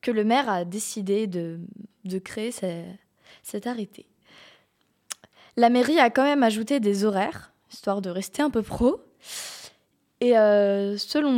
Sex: female